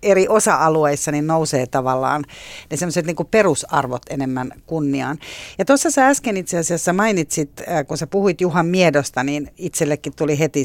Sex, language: female, Finnish